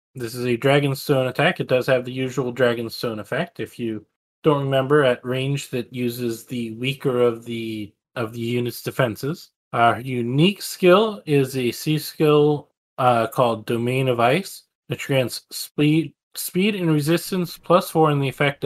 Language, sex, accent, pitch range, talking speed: English, male, American, 125-155 Hz, 165 wpm